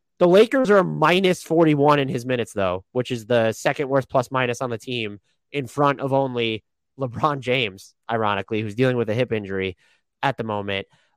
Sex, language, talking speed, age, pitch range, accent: male, English, 185 wpm, 20-39, 125-175 Hz, American